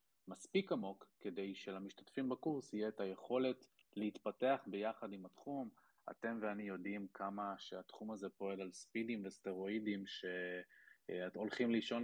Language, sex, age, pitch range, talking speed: Hebrew, male, 20-39, 95-115 Hz, 120 wpm